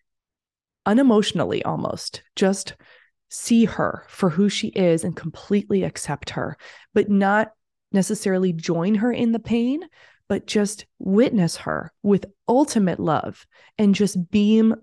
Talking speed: 125 wpm